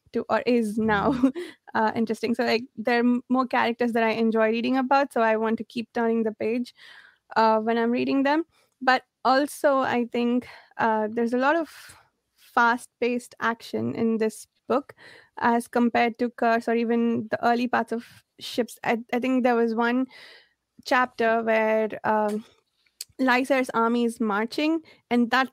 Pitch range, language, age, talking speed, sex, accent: 225-260 Hz, English, 20-39, 165 wpm, female, Indian